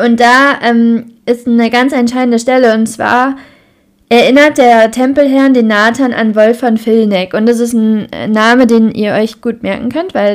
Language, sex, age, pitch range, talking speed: German, female, 20-39, 210-250 Hz, 180 wpm